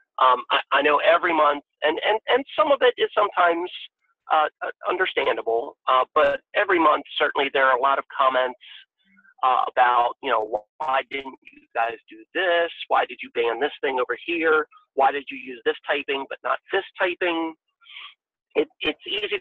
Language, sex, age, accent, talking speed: Ukrainian, male, 50-69, American, 180 wpm